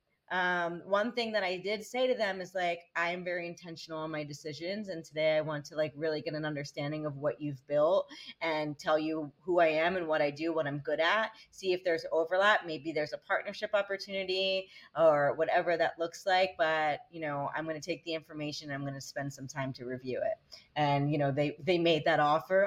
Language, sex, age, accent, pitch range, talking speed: English, female, 30-49, American, 155-200 Hz, 230 wpm